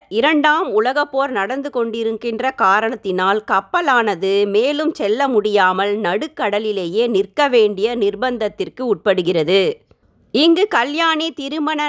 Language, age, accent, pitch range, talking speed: Tamil, 30-49, native, 205-280 Hz, 90 wpm